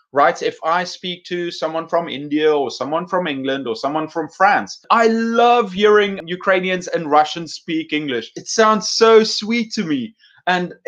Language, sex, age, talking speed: English, male, 30-49, 170 wpm